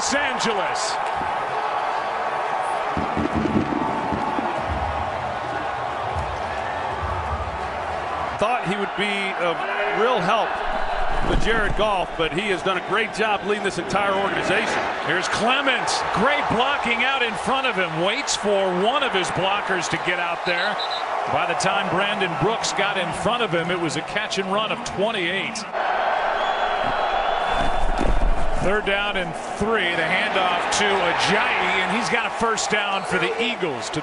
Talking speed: 135 wpm